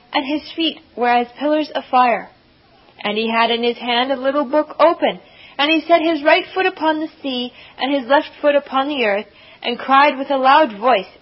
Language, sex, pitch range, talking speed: English, female, 250-315 Hz, 215 wpm